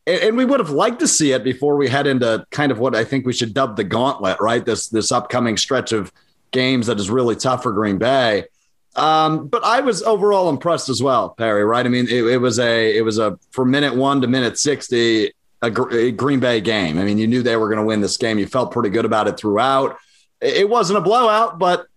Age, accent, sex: 30-49, American, male